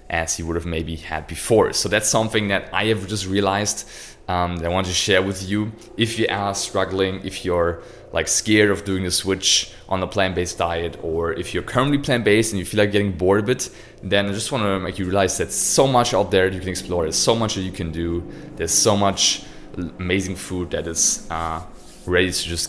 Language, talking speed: English, 225 wpm